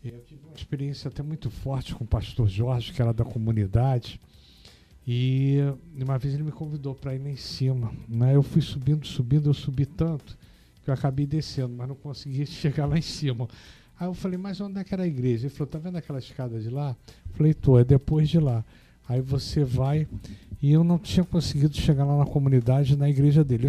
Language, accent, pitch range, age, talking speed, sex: Portuguese, Brazilian, 120-155 Hz, 60-79, 215 wpm, male